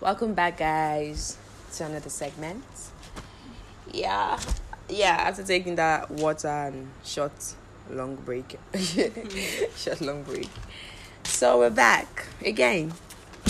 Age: 20-39